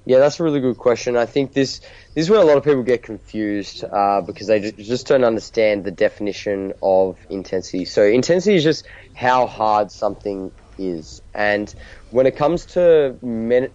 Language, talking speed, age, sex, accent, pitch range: English, 185 wpm, 20-39, male, Australian, 100-115 Hz